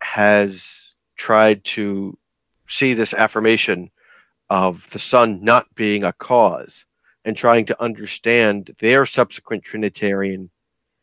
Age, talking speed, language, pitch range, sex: 50-69, 110 wpm, English, 105-140 Hz, male